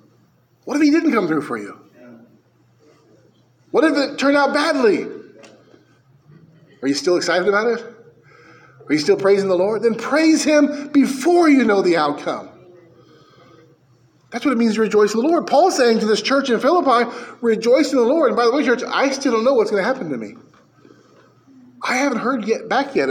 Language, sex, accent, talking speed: English, male, American, 195 wpm